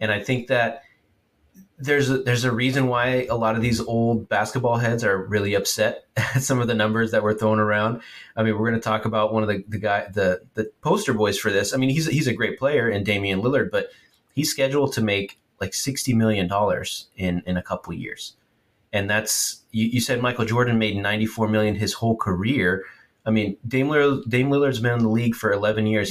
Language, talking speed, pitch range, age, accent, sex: English, 230 wpm, 100-120 Hz, 30-49, American, male